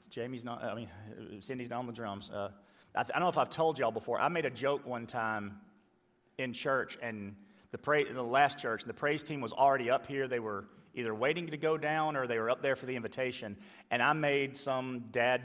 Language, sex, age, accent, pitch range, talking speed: English, male, 40-59, American, 120-160 Hz, 230 wpm